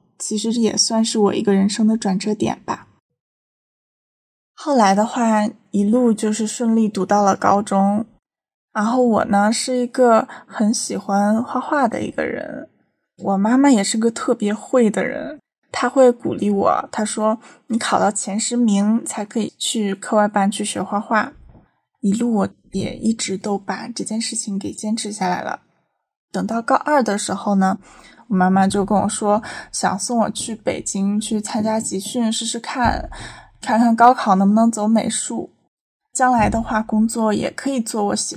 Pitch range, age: 200-235 Hz, 20-39